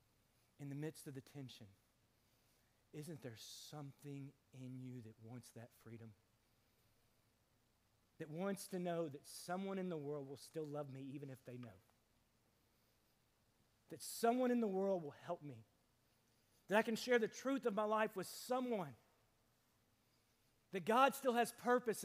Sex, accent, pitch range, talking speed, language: male, American, 115-180 Hz, 150 wpm, English